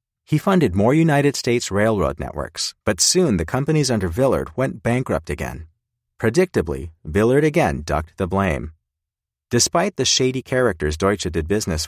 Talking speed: 145 wpm